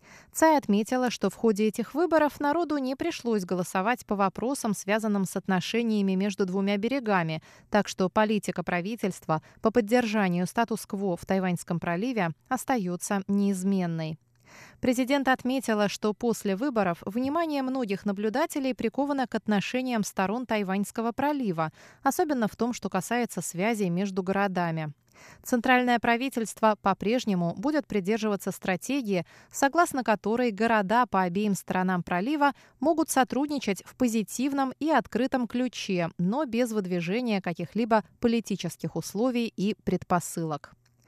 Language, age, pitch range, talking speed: Russian, 20-39, 190-255 Hz, 120 wpm